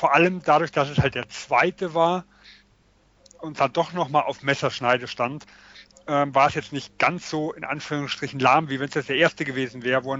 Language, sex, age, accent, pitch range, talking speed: German, male, 30-49, German, 140-170 Hz, 220 wpm